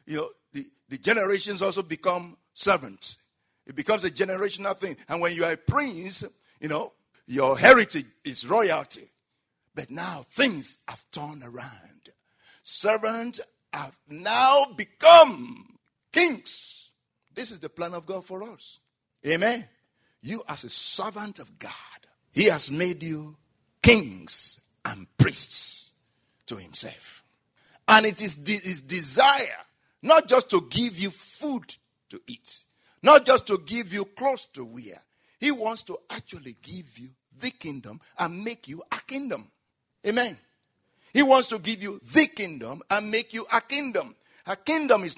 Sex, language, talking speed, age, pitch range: male, English, 145 wpm, 60-79, 180-265 Hz